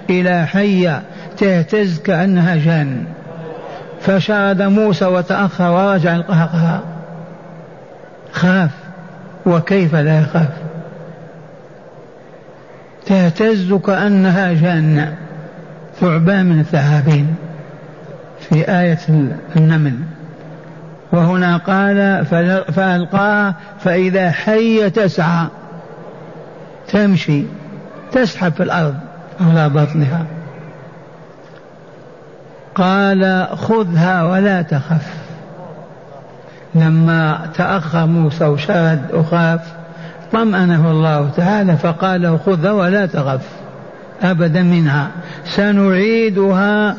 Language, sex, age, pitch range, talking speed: Arabic, male, 50-69, 165-190 Hz, 70 wpm